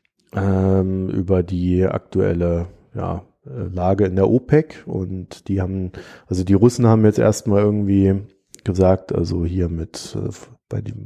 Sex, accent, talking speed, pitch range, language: male, German, 120 wpm, 90-105 Hz, German